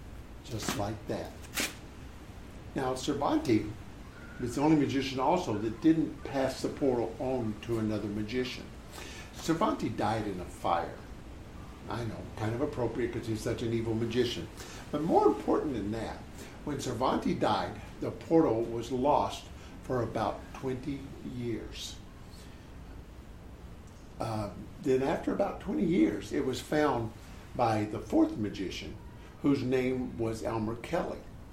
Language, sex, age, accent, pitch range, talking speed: English, male, 60-79, American, 105-140 Hz, 130 wpm